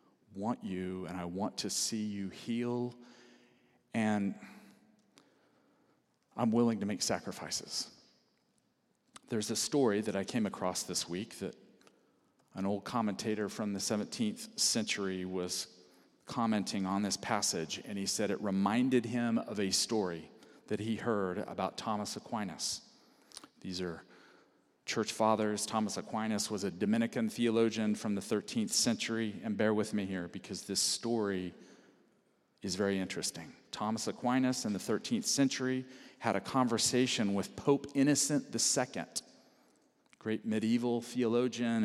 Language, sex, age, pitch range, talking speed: English, male, 40-59, 100-125 Hz, 135 wpm